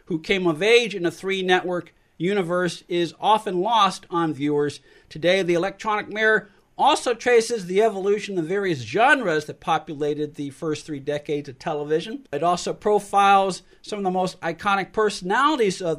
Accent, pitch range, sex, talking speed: American, 160-205 Hz, male, 160 wpm